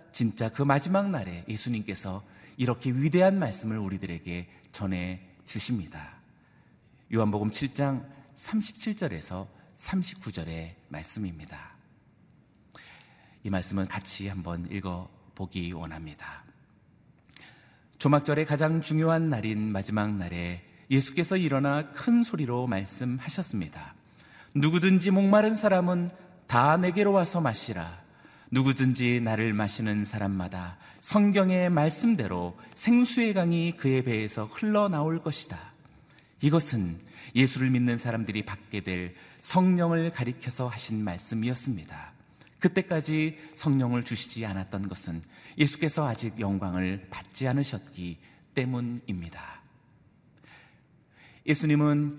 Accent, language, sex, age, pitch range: native, Korean, male, 40-59, 100-160 Hz